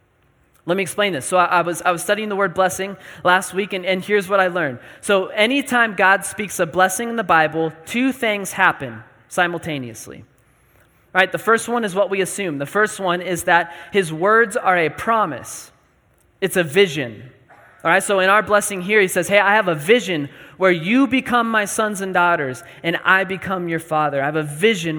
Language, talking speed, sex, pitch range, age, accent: English, 205 wpm, male, 165-200 Hz, 20-39, American